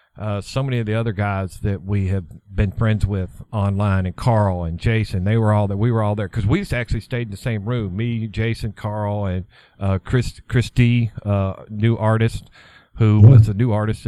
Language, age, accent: English, 50-69, American